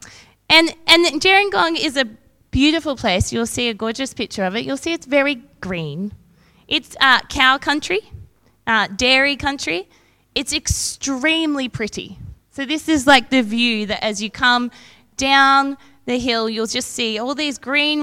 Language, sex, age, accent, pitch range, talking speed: English, female, 20-39, Australian, 215-295 Hz, 160 wpm